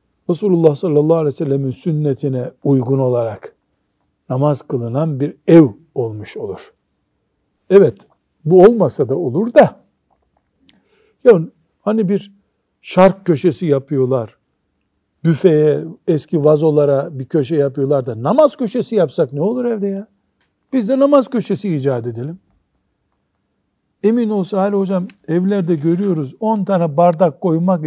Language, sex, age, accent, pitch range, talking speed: Turkish, male, 60-79, native, 135-195 Hz, 120 wpm